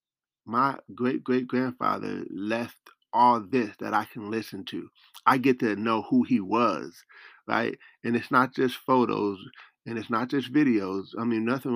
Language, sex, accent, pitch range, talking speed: English, male, American, 105-130 Hz, 170 wpm